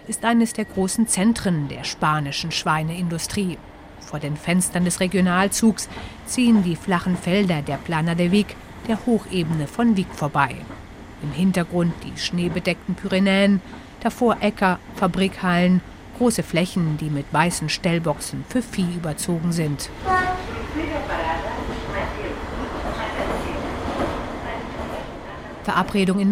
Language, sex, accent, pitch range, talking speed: German, female, German, 165-210 Hz, 105 wpm